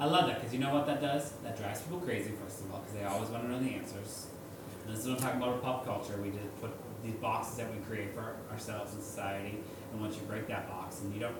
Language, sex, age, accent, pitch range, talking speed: English, male, 30-49, American, 95-120 Hz, 290 wpm